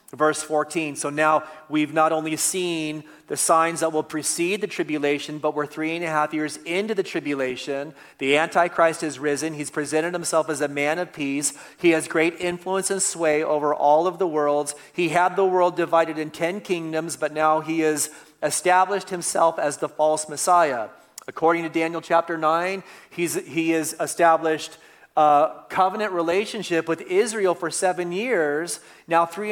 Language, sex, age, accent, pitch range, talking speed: English, male, 40-59, American, 150-170 Hz, 175 wpm